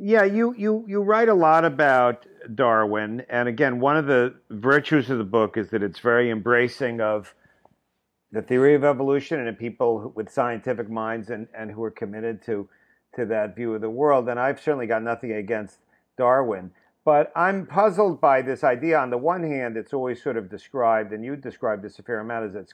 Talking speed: 205 wpm